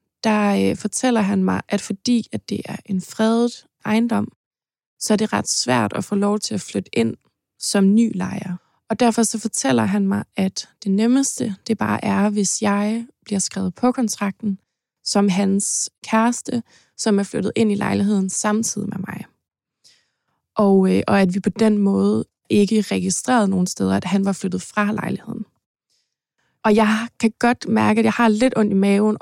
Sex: female